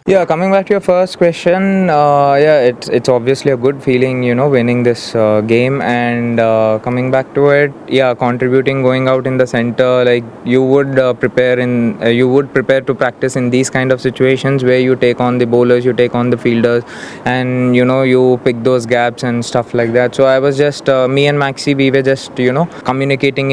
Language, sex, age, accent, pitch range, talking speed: English, male, 20-39, Indian, 120-140 Hz, 220 wpm